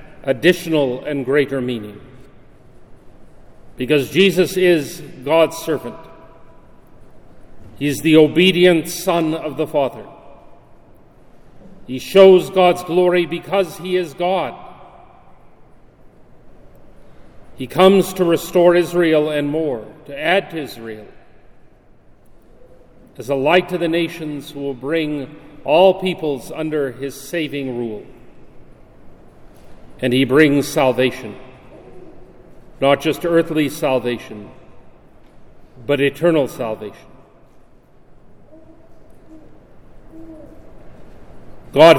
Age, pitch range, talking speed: 40-59, 135-170 Hz, 90 wpm